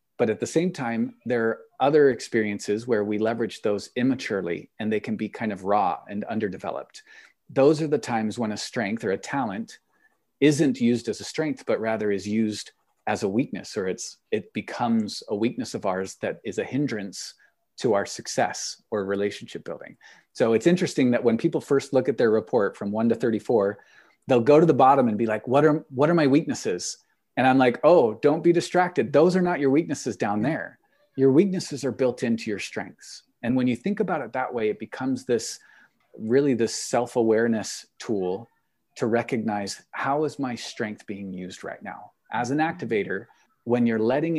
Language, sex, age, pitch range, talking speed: English, male, 40-59, 110-145 Hz, 195 wpm